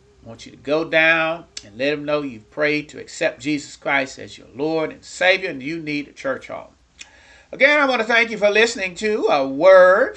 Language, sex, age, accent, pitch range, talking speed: English, male, 40-59, American, 140-185 Hz, 225 wpm